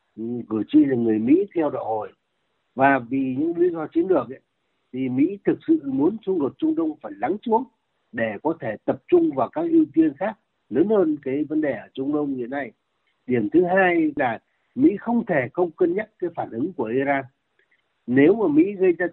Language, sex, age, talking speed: Vietnamese, male, 60-79, 205 wpm